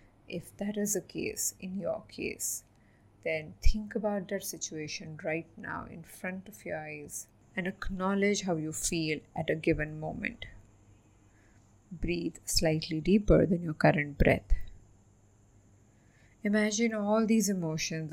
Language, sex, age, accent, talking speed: English, female, 20-39, Indian, 130 wpm